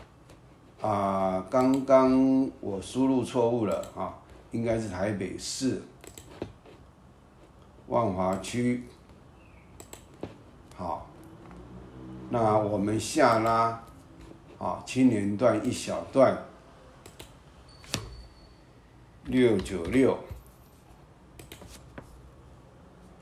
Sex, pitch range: male, 95-125 Hz